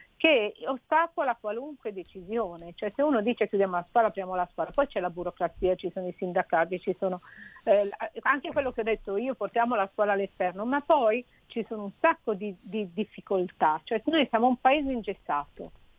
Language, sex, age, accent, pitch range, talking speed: Italian, female, 50-69, native, 185-235 Hz, 190 wpm